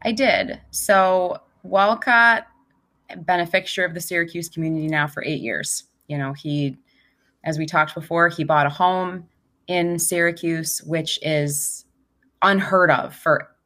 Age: 20-39